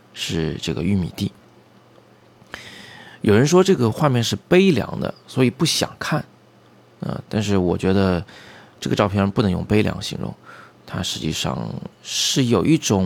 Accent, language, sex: native, Chinese, male